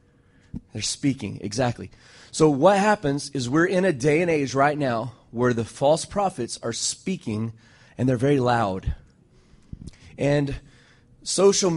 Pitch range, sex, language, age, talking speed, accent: 120-150 Hz, male, English, 30-49, 140 wpm, American